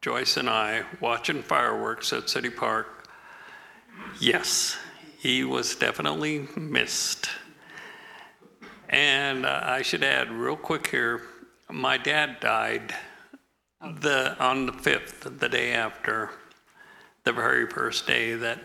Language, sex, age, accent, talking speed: English, male, 60-79, American, 115 wpm